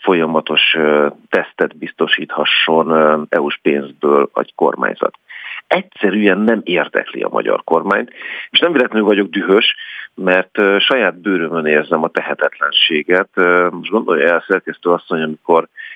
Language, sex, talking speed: Hungarian, male, 115 wpm